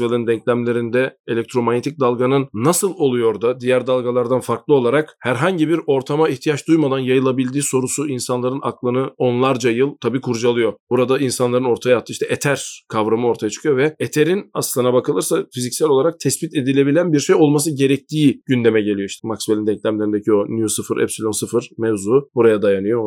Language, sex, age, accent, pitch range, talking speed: Turkish, male, 40-59, native, 115-145 Hz, 150 wpm